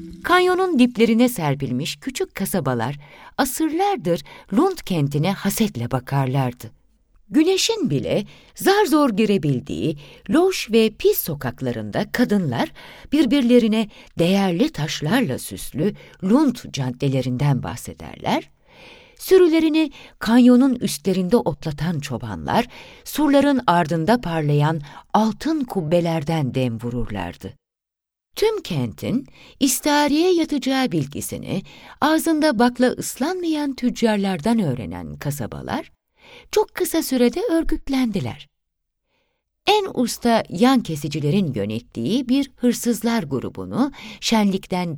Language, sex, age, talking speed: Turkish, female, 60-79, 85 wpm